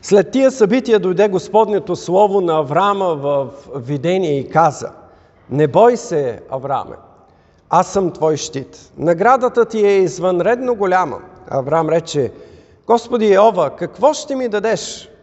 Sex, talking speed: male, 130 wpm